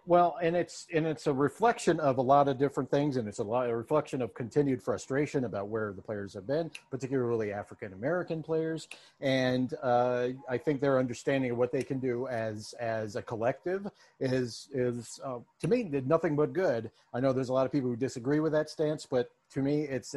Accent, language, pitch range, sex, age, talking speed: American, English, 115-150 Hz, male, 50-69, 215 wpm